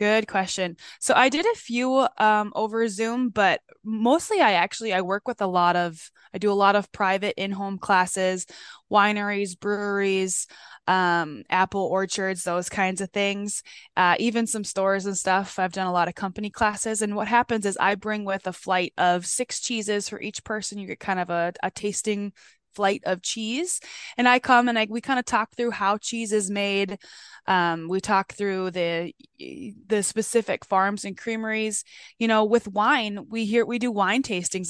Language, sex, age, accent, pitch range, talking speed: English, female, 20-39, American, 185-220 Hz, 190 wpm